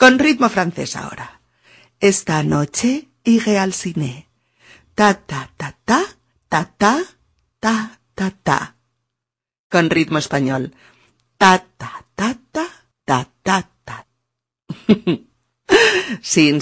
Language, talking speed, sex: Spanish, 65 wpm, female